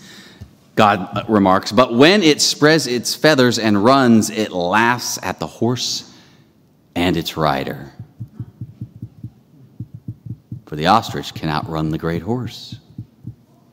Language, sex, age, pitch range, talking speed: English, male, 30-49, 95-155 Hz, 115 wpm